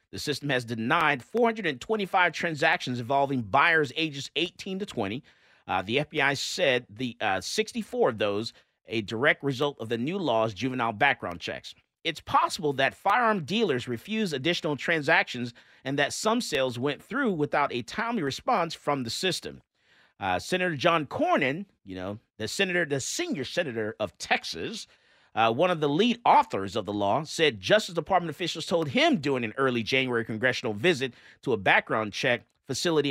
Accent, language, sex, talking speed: American, English, male, 165 wpm